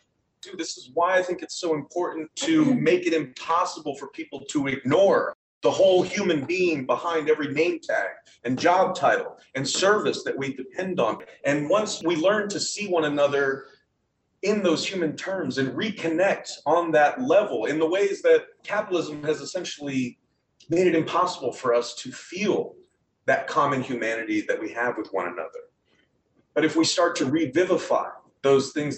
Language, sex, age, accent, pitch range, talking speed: English, male, 30-49, American, 140-210 Hz, 170 wpm